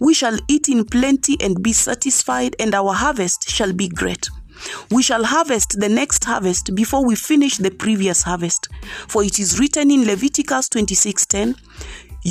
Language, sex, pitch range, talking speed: English, female, 200-270 Hz, 160 wpm